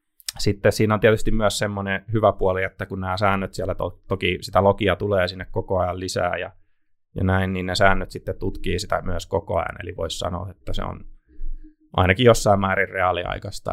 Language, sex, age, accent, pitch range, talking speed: Finnish, male, 20-39, native, 90-105 Hz, 190 wpm